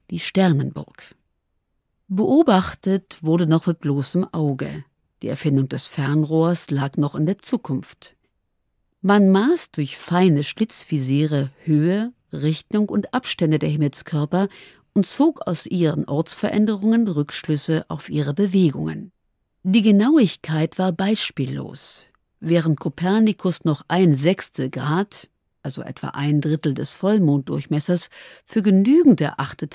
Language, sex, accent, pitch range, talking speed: German, female, German, 150-195 Hz, 115 wpm